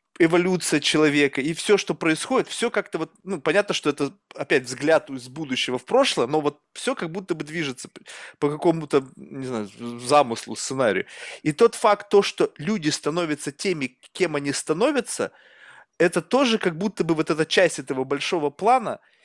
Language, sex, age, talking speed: Russian, male, 20-39, 170 wpm